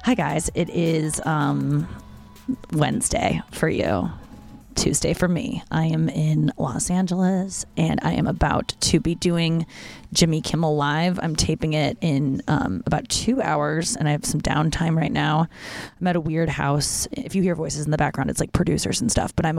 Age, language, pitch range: 20-39, English, 155-185 Hz